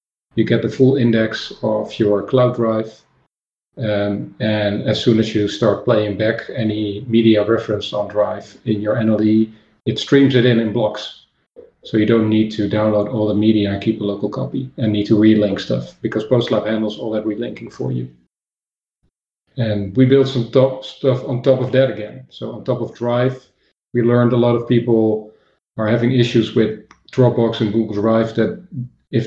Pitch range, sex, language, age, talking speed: 110-125 Hz, male, English, 40-59, 185 wpm